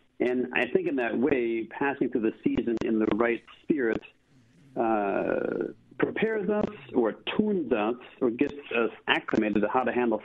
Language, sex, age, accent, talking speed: English, male, 50-69, American, 165 wpm